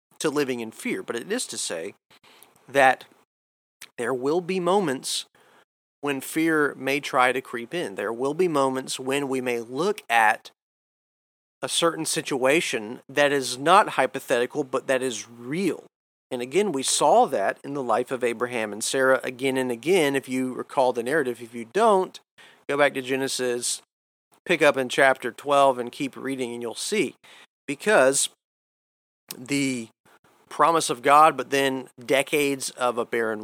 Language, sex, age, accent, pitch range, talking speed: English, male, 40-59, American, 125-145 Hz, 160 wpm